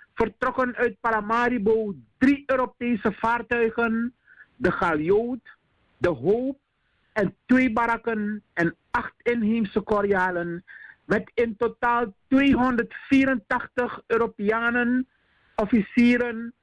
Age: 50-69